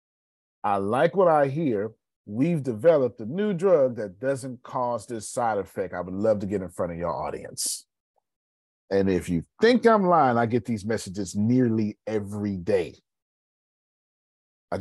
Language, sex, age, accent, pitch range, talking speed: English, male, 40-59, American, 95-155 Hz, 160 wpm